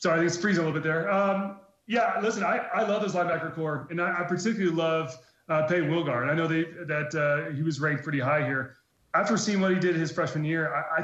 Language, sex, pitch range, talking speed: English, male, 150-180 Hz, 255 wpm